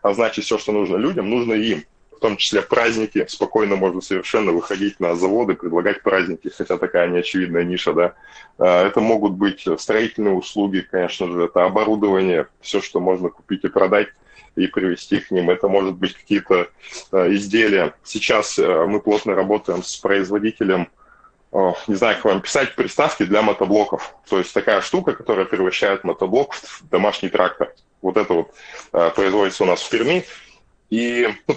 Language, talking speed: Russian, 160 wpm